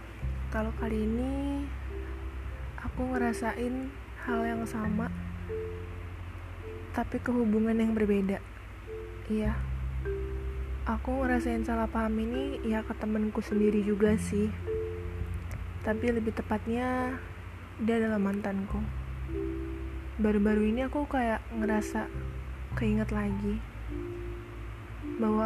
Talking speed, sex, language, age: 90 wpm, female, Indonesian, 20-39